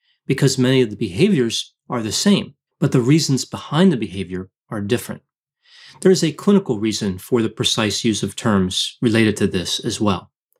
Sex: male